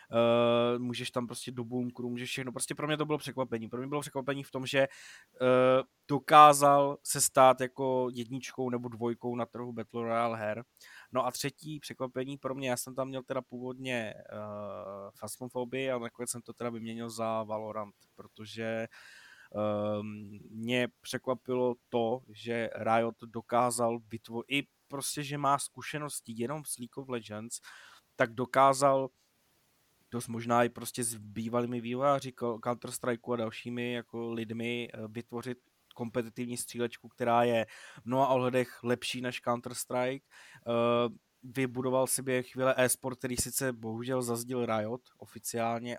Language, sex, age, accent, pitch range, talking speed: Czech, male, 20-39, native, 115-130 Hz, 140 wpm